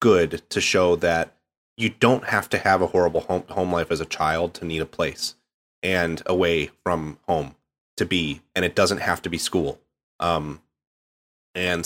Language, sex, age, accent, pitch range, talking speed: English, male, 30-49, American, 80-95 Hz, 180 wpm